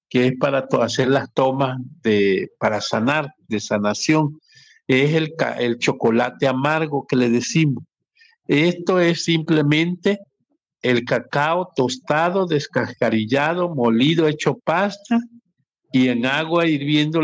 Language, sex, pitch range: Spanish, male, 125-160 Hz